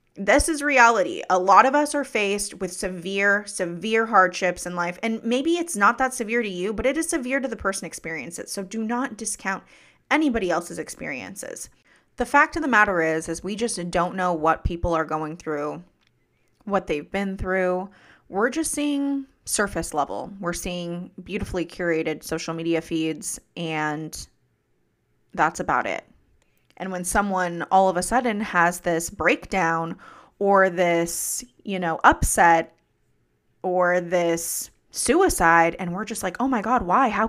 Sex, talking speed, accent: female, 165 wpm, American